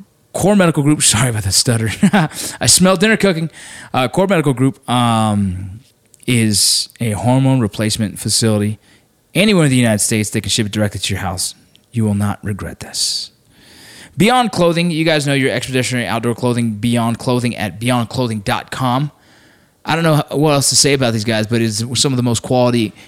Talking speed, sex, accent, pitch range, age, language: 180 wpm, male, American, 110-145 Hz, 20-39, English